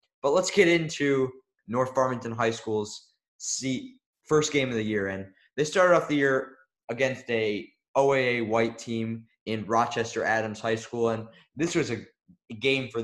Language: English